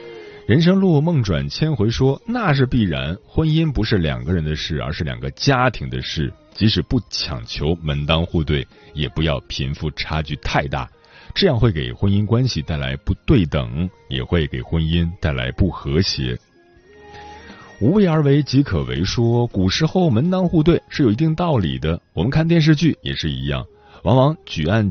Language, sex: Chinese, male